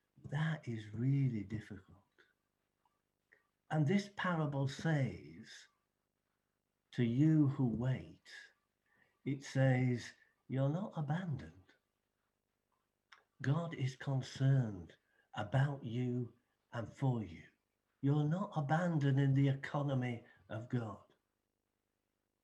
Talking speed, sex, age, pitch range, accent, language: 90 wpm, male, 60-79, 105-155 Hz, British, English